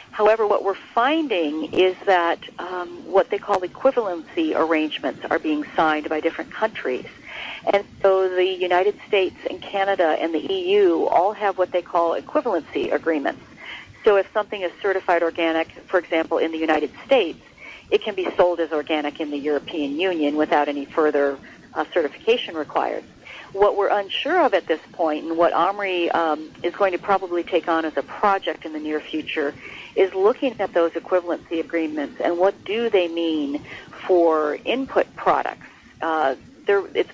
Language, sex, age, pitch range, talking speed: English, female, 50-69, 165-210 Hz, 165 wpm